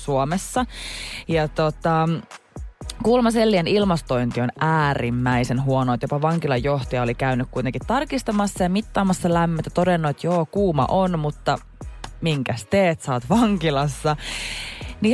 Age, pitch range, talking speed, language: 20-39, 135-195 Hz, 115 wpm, Finnish